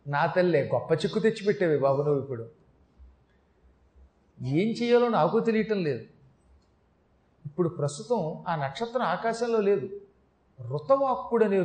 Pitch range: 165-225 Hz